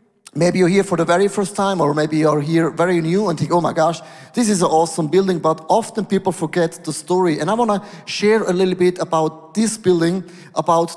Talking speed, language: 230 wpm, English